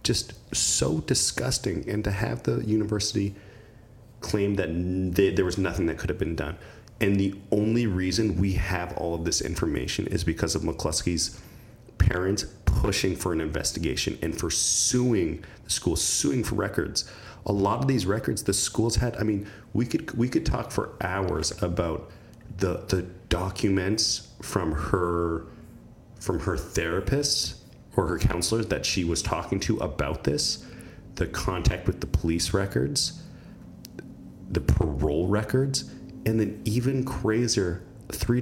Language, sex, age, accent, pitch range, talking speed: English, male, 30-49, American, 95-115 Hz, 150 wpm